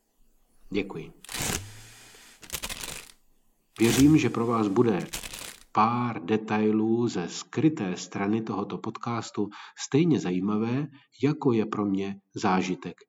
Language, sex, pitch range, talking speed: Czech, male, 100-140 Hz, 90 wpm